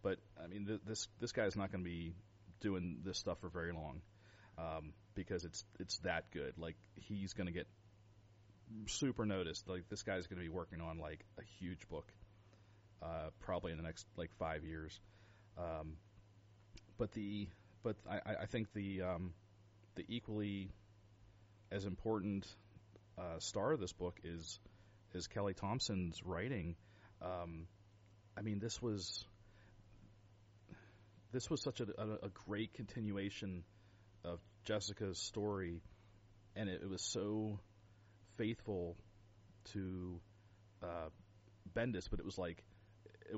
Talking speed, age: 140 wpm, 30-49